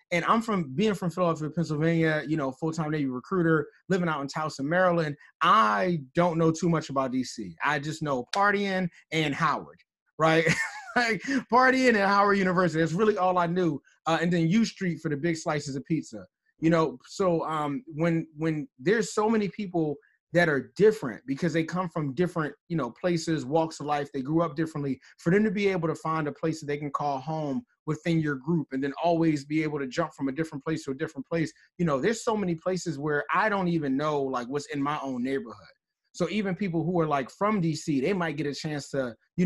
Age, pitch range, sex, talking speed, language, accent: 30-49, 145-180 Hz, male, 215 wpm, English, American